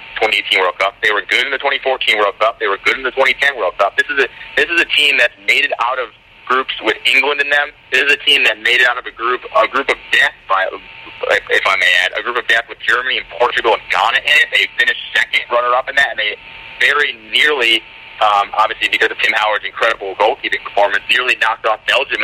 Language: English